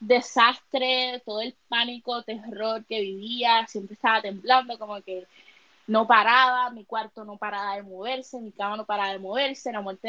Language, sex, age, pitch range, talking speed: Spanish, female, 20-39, 200-255 Hz, 165 wpm